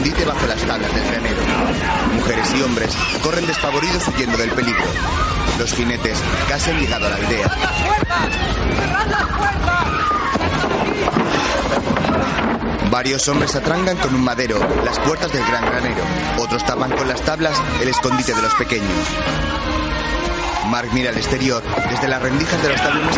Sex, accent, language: male, Spanish, Spanish